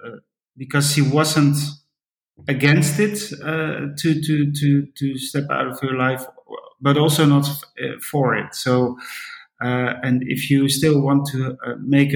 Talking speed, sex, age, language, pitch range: 155 wpm, male, 30-49, English, 120-140 Hz